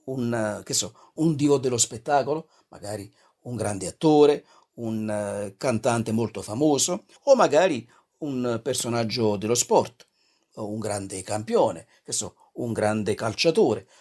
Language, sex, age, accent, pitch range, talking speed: Italian, male, 50-69, native, 115-175 Hz, 125 wpm